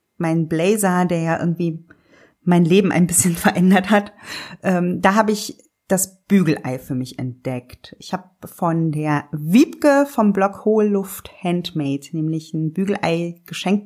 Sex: female